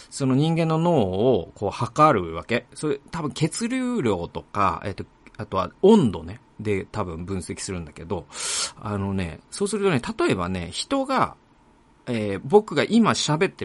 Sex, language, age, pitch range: male, Japanese, 40-59, 95-155 Hz